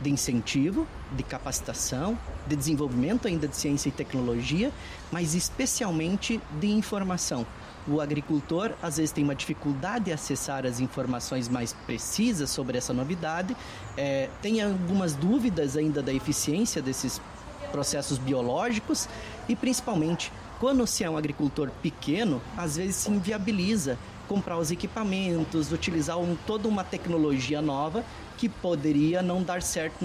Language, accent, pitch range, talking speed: Portuguese, Brazilian, 140-180 Hz, 130 wpm